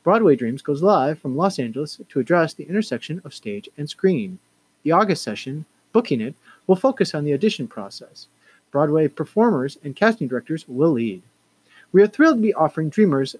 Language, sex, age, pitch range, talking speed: English, male, 40-59, 140-200 Hz, 180 wpm